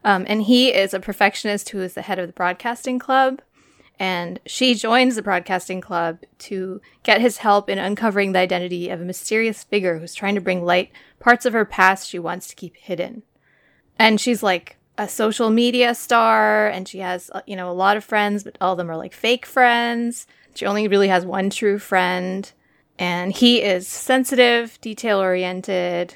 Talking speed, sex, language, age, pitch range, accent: 190 wpm, female, English, 20-39, 180-225 Hz, American